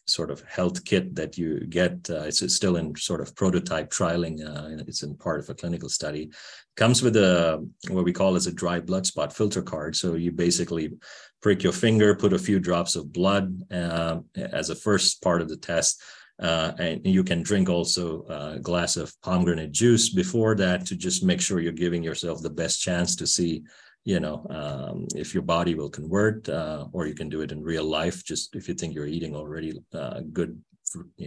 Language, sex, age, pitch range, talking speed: English, male, 40-59, 80-95 Hz, 210 wpm